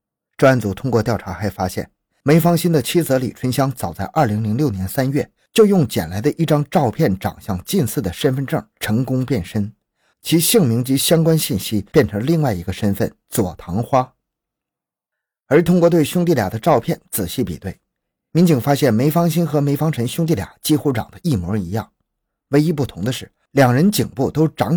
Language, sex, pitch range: Chinese, male, 105-155 Hz